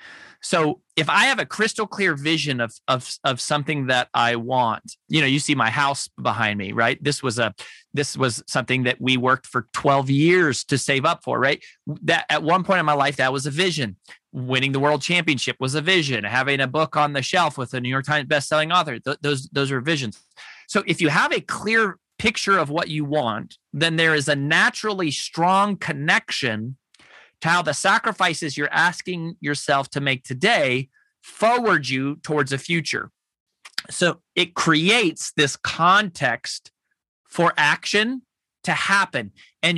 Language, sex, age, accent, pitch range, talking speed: English, male, 30-49, American, 135-175 Hz, 180 wpm